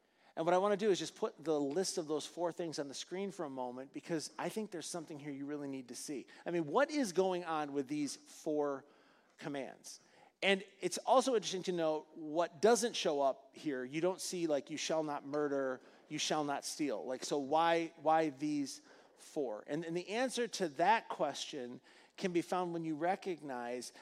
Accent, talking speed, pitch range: American, 210 wpm, 160-200 Hz